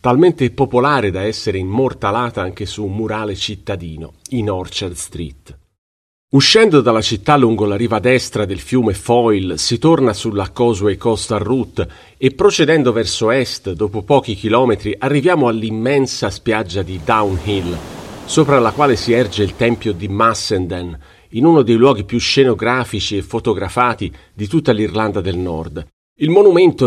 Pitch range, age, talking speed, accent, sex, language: 100-125 Hz, 40-59, 145 wpm, native, male, Italian